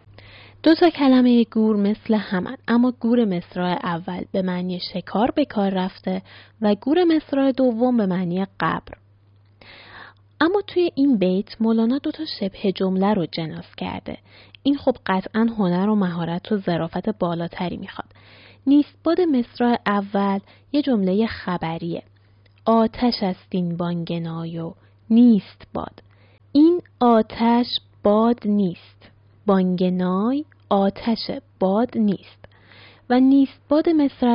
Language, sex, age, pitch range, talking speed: Persian, female, 10-29, 175-240 Hz, 120 wpm